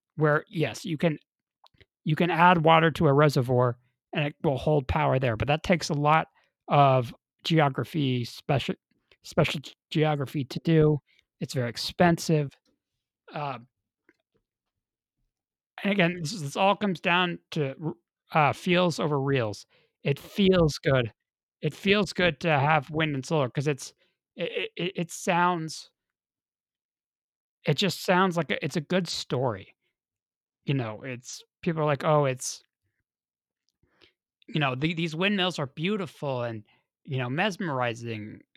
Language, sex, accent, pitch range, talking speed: English, male, American, 135-170 Hz, 140 wpm